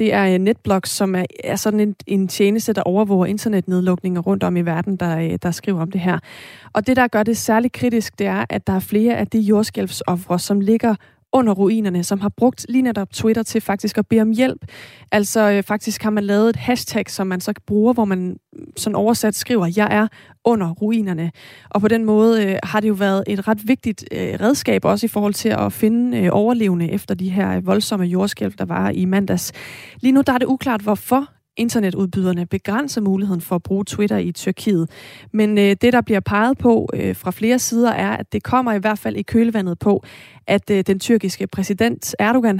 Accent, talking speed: native, 205 wpm